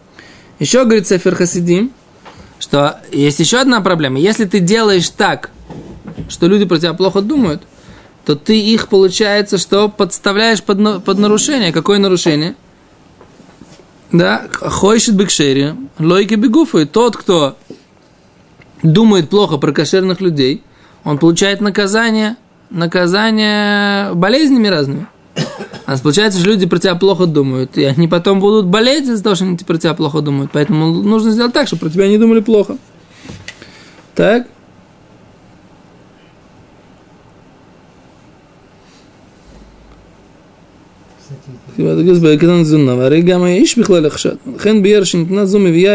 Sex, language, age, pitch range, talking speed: male, Russian, 20-39, 170-215 Hz, 95 wpm